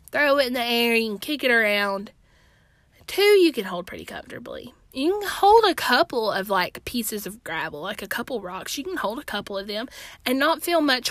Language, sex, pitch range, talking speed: English, female, 180-240 Hz, 220 wpm